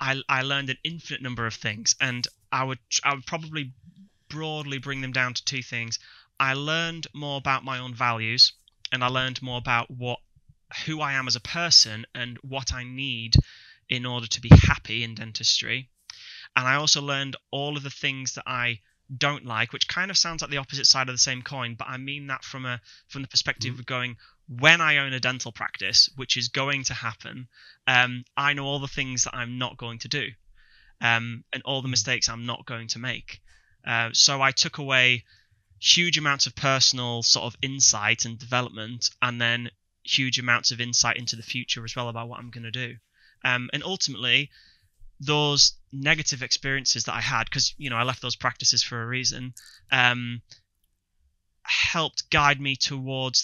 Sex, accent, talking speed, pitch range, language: male, British, 195 wpm, 120-135 Hz, English